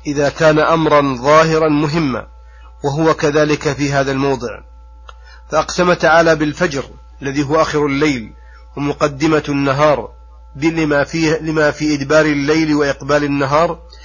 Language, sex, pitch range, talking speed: Arabic, male, 135-155 Hz, 105 wpm